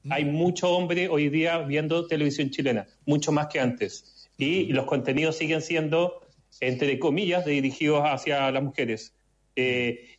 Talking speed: 140 wpm